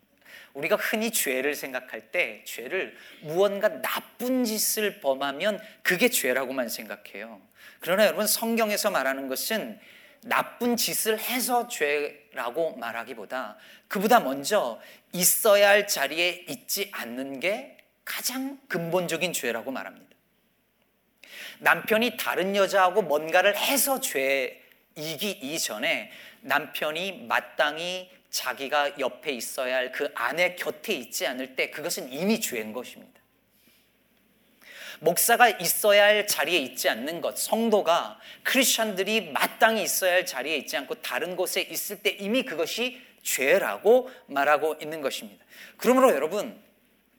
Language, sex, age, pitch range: Korean, male, 40-59, 165-230 Hz